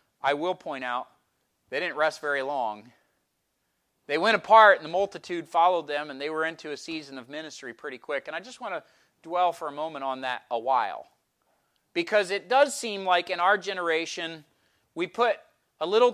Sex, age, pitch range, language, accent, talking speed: male, 40-59, 155-215 Hz, English, American, 195 wpm